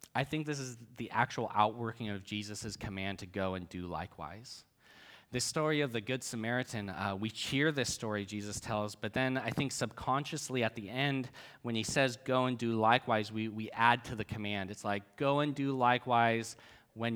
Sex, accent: male, American